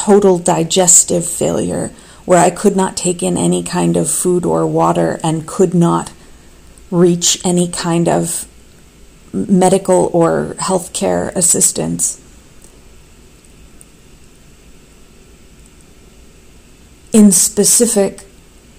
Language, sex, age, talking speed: English, female, 40-59, 95 wpm